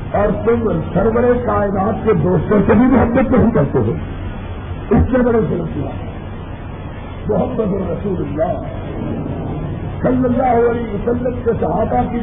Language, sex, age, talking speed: Urdu, male, 50-69, 130 wpm